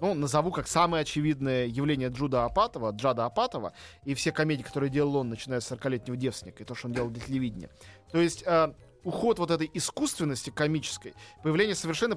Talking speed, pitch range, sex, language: 180 wpm, 125-175 Hz, male, Russian